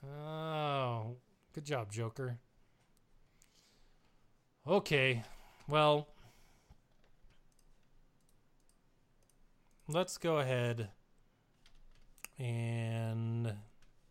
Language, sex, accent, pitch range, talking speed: English, male, American, 120-160 Hz, 45 wpm